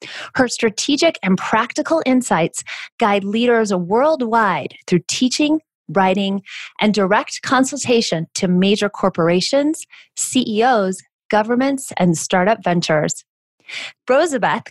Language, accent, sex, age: English, American, female, 30-49